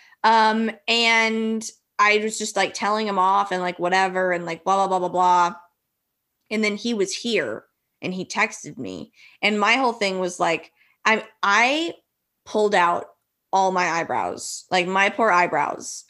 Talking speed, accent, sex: 170 wpm, American, female